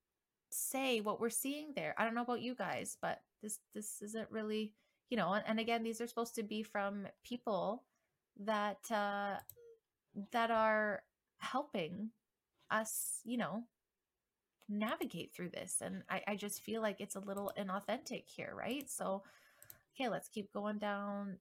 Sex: female